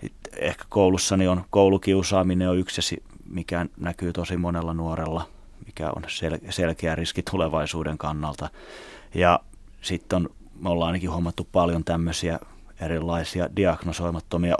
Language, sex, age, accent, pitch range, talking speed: Finnish, male, 30-49, native, 85-95 Hz, 115 wpm